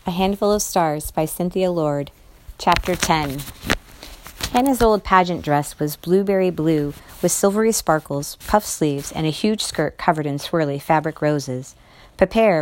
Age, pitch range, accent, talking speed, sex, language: 40-59, 140-175 Hz, American, 145 wpm, female, English